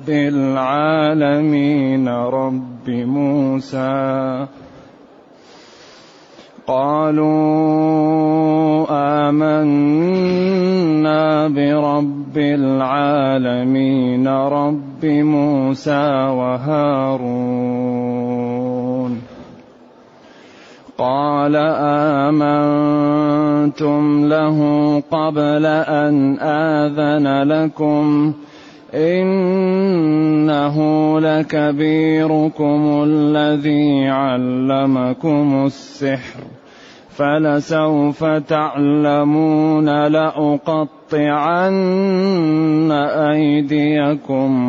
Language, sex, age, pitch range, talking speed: Arabic, male, 30-49, 135-155 Hz, 35 wpm